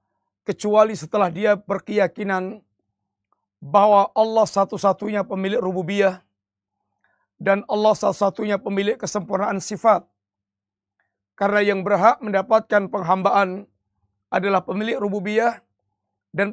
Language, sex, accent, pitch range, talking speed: Indonesian, male, native, 180-225 Hz, 85 wpm